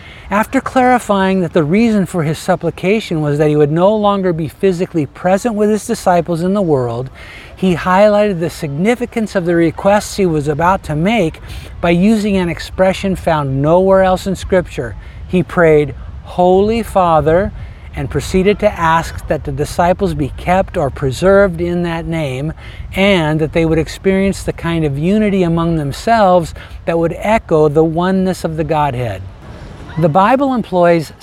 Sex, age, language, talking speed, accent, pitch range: male, 50-69, English, 160 wpm, American, 145-190 Hz